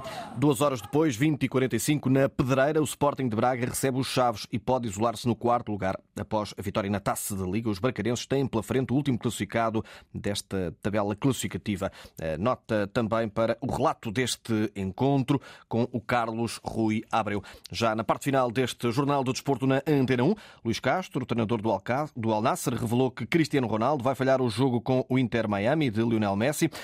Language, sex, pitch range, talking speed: Portuguese, male, 110-140 Hz, 180 wpm